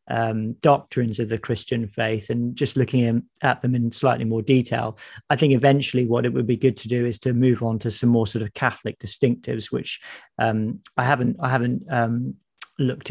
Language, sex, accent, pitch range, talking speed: English, male, British, 115-125 Hz, 200 wpm